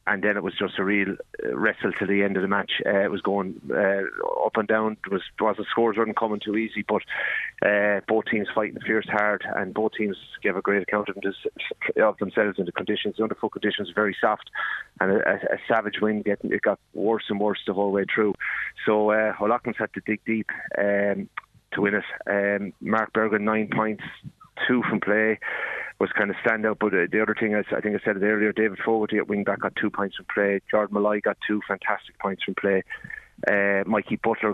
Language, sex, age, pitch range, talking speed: English, male, 30-49, 100-110 Hz, 230 wpm